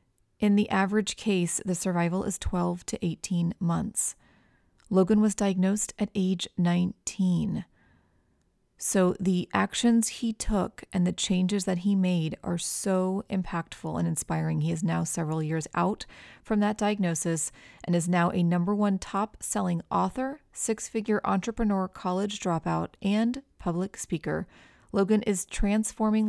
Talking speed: 140 wpm